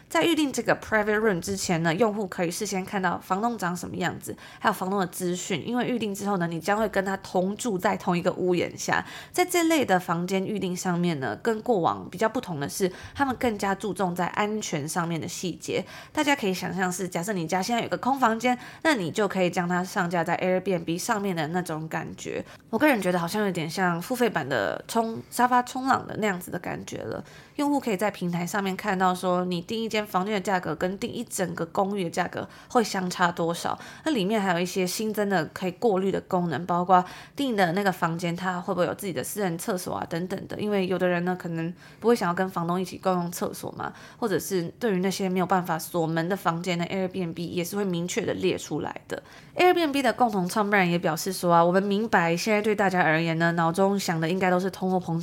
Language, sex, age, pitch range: Chinese, female, 20-39, 175-210 Hz